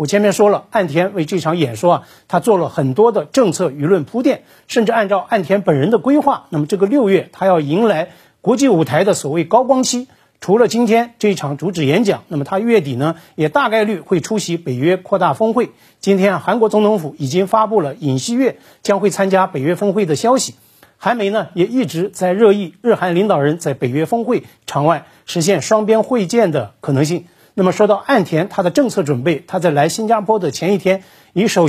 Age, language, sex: 50-69, Chinese, male